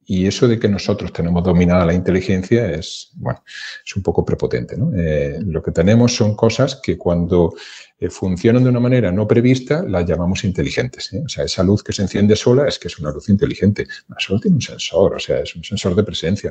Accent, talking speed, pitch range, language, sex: Spanish, 210 wpm, 90-115 Hz, Spanish, male